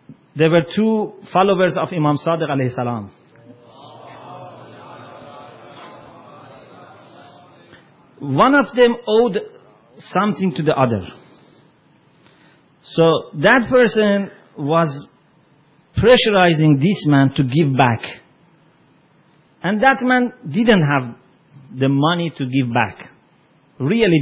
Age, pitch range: 40-59, 145-190 Hz